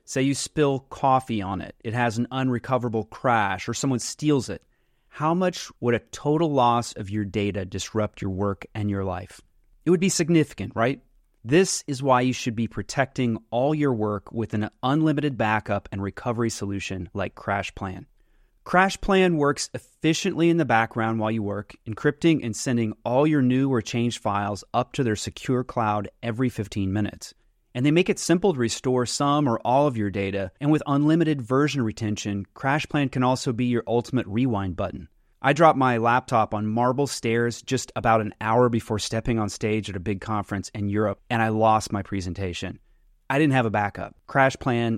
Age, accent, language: 30-49, American, English